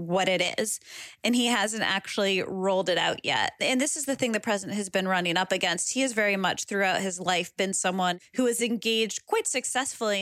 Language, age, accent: English, 20-39, American